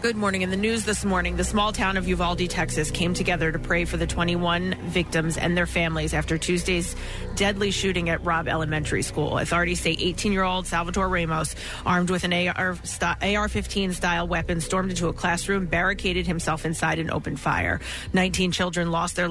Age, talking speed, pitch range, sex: 30-49, 175 wpm, 165-185 Hz, female